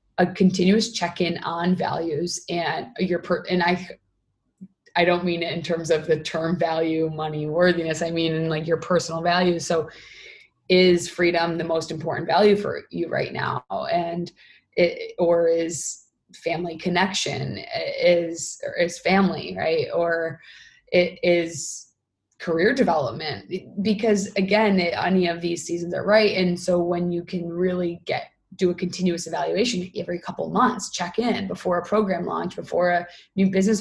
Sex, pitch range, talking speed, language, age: female, 170-190 Hz, 155 wpm, English, 20-39